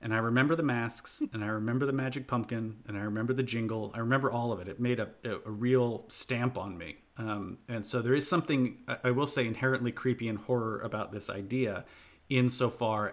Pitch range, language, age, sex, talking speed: 110-130 Hz, English, 40-59, male, 210 wpm